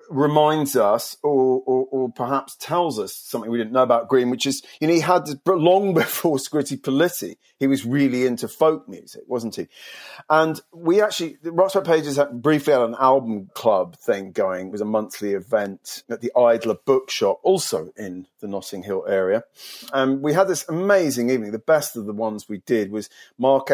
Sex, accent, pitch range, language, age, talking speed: male, British, 115-155 Hz, English, 40-59, 190 wpm